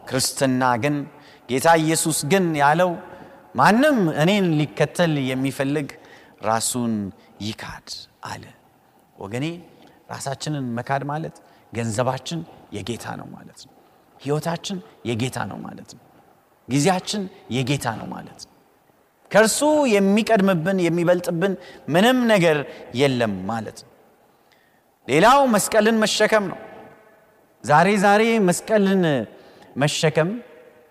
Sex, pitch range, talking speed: male, 145-215 Hz, 90 wpm